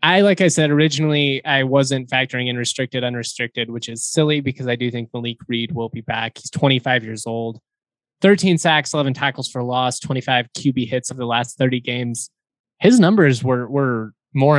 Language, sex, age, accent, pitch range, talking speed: English, male, 20-39, American, 125-145 Hz, 190 wpm